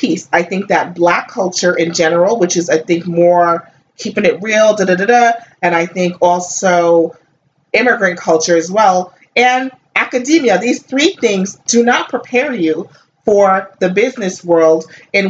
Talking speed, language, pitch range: 150 wpm, English, 170-205 Hz